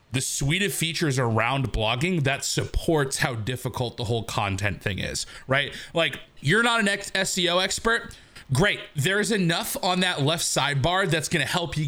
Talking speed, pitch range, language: 175 wpm, 125-170 Hz, English